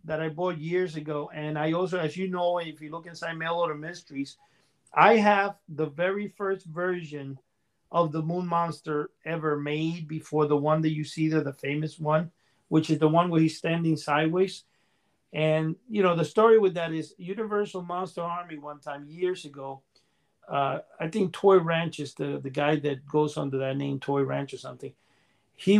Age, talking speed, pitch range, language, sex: 50-69, 190 wpm, 150-185 Hz, English, male